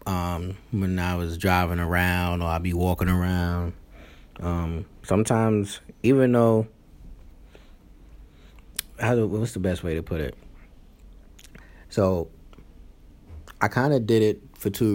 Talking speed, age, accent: 120 wpm, 30-49, American